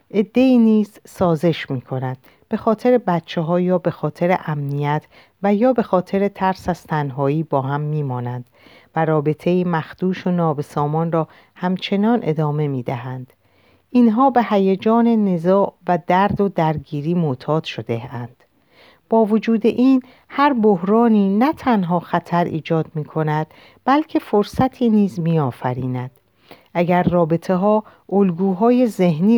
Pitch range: 160-210 Hz